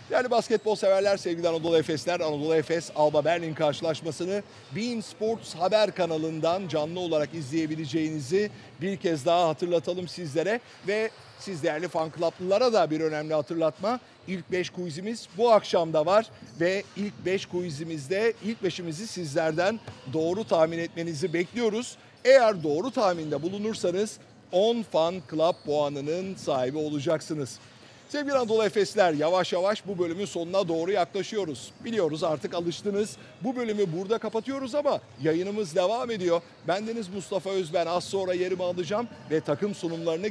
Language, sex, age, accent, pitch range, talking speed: Turkish, male, 50-69, native, 160-200 Hz, 135 wpm